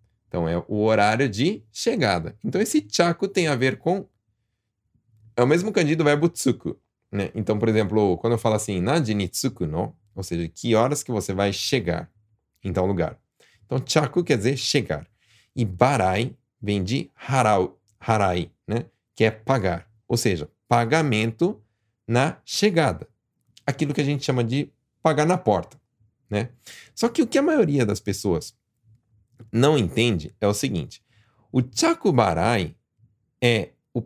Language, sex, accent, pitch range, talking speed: Portuguese, male, Brazilian, 105-135 Hz, 155 wpm